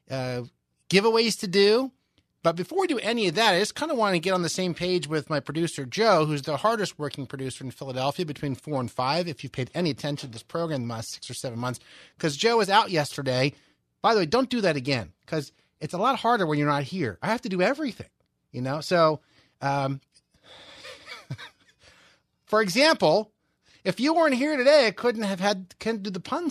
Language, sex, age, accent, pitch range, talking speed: English, male, 30-49, American, 140-195 Hz, 220 wpm